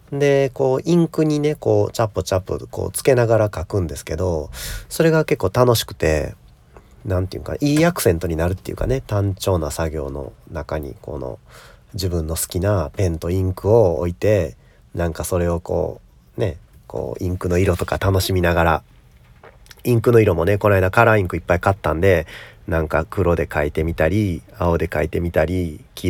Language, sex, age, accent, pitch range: Japanese, male, 40-59, native, 85-110 Hz